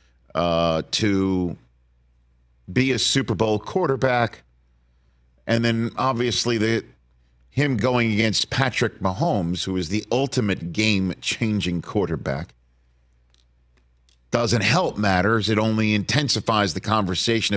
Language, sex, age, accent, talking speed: English, male, 50-69, American, 100 wpm